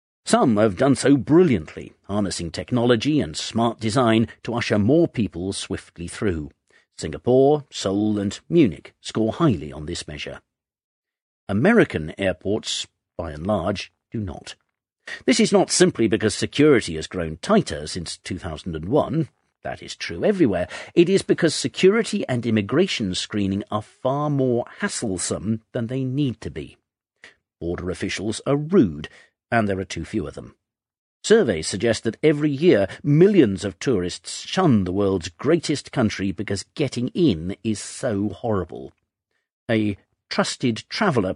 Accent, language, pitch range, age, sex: British, Chinese, 95-130 Hz, 50-69, male